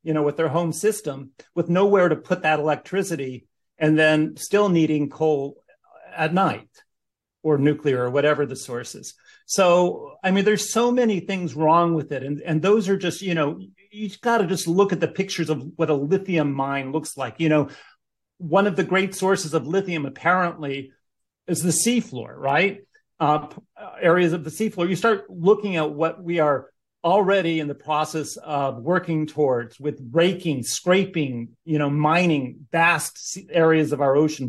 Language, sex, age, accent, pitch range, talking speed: English, male, 40-59, American, 140-175 Hz, 175 wpm